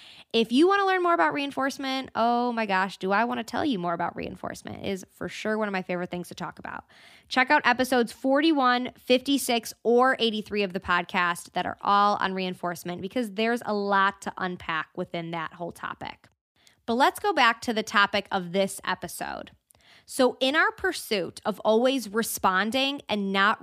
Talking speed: 190 wpm